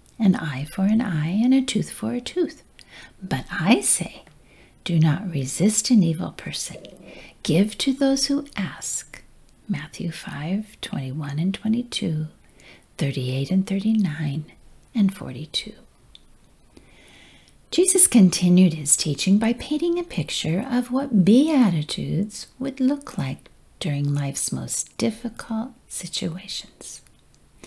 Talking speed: 115 wpm